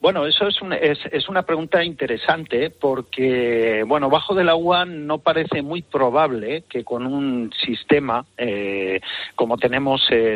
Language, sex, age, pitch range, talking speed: Spanish, male, 50-69, 115-155 Hz, 140 wpm